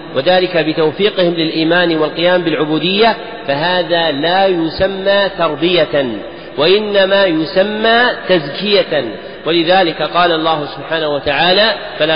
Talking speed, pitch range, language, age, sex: 90 wpm, 160-200 Hz, Arabic, 40-59, male